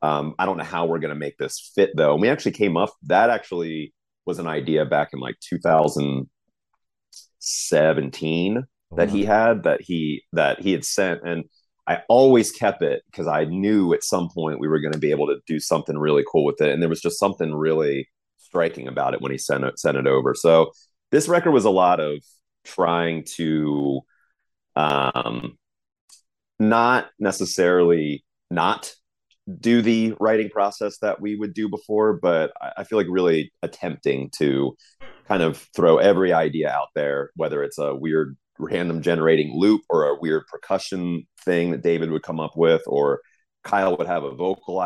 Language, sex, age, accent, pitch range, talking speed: English, male, 30-49, American, 75-105 Hz, 185 wpm